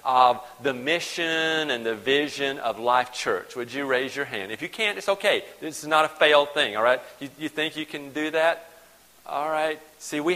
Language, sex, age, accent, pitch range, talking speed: English, male, 40-59, American, 135-170 Hz, 220 wpm